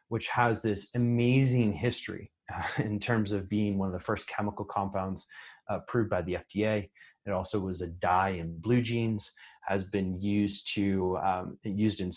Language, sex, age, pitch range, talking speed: English, male, 30-49, 95-115 Hz, 180 wpm